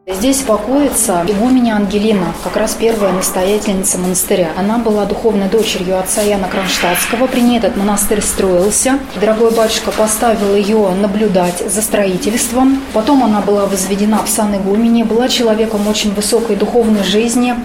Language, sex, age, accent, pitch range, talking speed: Russian, female, 30-49, native, 205-235 Hz, 135 wpm